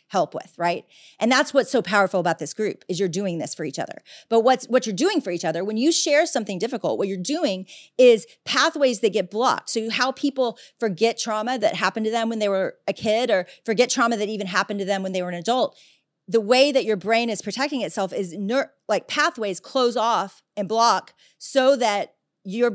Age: 40-59